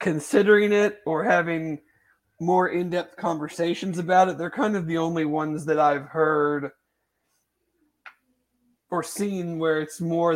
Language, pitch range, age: English, 150-180 Hz, 30-49